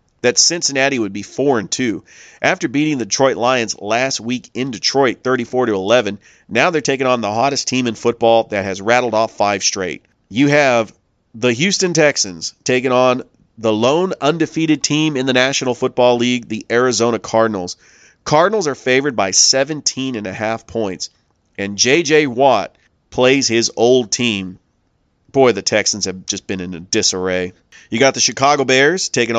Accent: American